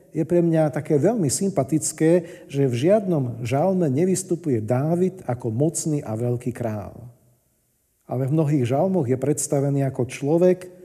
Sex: male